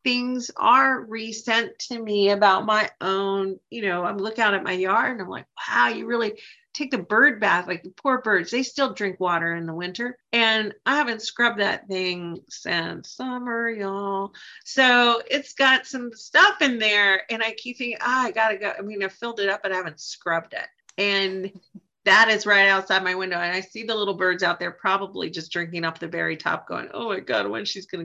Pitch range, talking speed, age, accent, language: 195-250 Hz, 215 wpm, 40-59, American, English